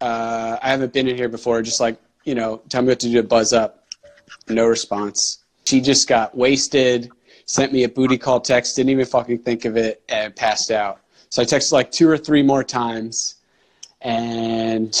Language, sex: English, male